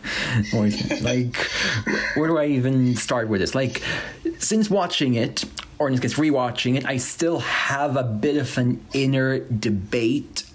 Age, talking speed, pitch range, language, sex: 30-49, 155 wpm, 115-140 Hz, English, male